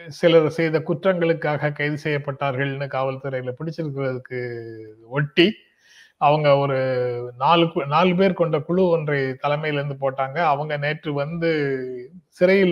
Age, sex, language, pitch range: 30-49, male, Tamil, 135-165 Hz